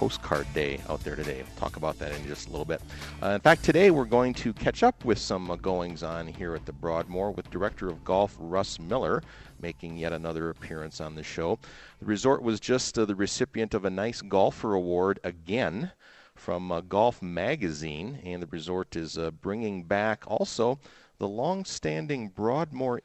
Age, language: 40-59, English